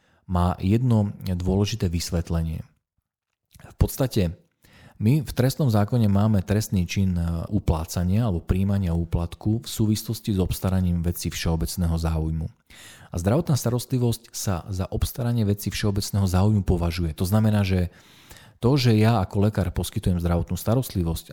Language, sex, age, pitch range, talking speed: Slovak, male, 40-59, 85-110 Hz, 125 wpm